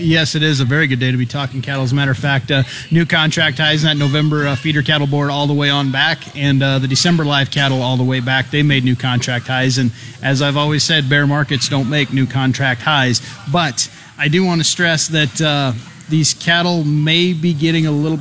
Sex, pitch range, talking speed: male, 135-155 Hz, 245 wpm